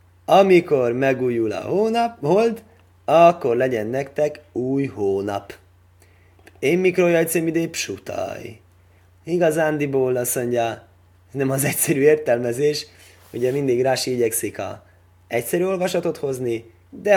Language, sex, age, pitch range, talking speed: Hungarian, male, 20-39, 100-145 Hz, 100 wpm